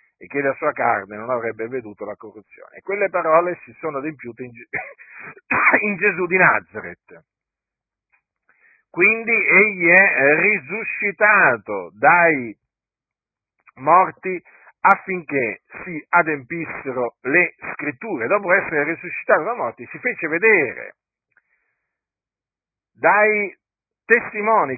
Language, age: Italian, 50-69